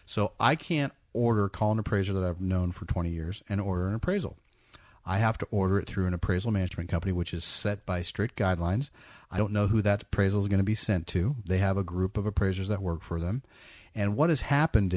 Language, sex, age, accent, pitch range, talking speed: English, male, 40-59, American, 90-105 Hz, 235 wpm